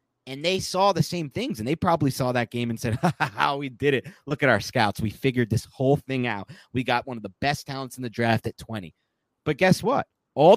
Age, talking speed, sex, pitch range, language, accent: 30-49, 250 wpm, male, 115-155 Hz, English, American